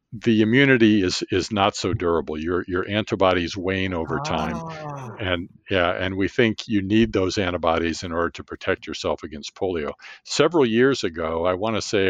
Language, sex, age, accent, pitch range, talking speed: English, male, 50-69, American, 85-105 Hz, 180 wpm